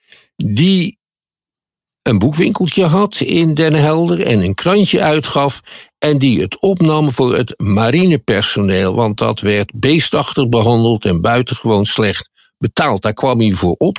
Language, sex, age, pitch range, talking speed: Dutch, male, 50-69, 105-160 Hz, 135 wpm